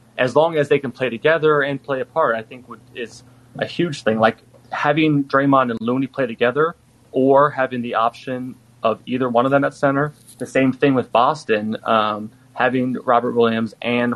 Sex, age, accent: male, 20-39, American